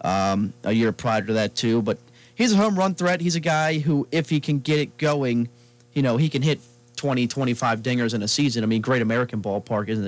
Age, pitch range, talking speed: 30-49, 110-140 Hz, 240 wpm